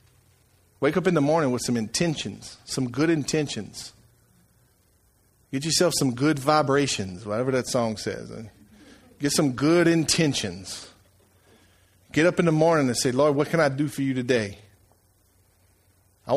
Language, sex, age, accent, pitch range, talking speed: English, male, 40-59, American, 95-140 Hz, 145 wpm